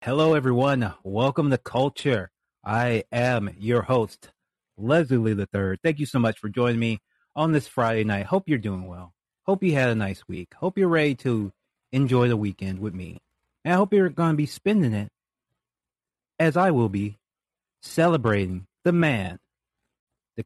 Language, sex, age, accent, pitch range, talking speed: English, male, 30-49, American, 110-160 Hz, 175 wpm